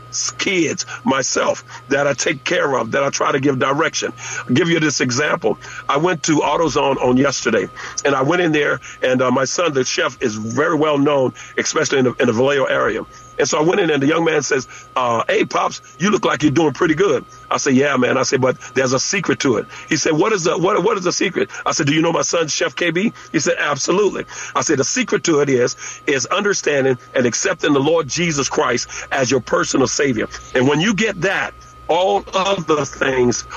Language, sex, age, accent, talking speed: English, male, 50-69, American, 225 wpm